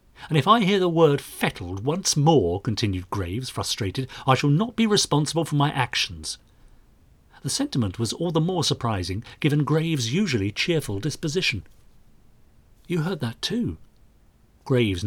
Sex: male